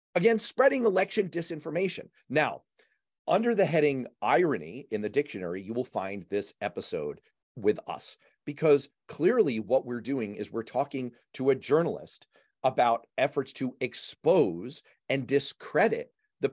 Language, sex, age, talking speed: English, male, 40-59, 135 wpm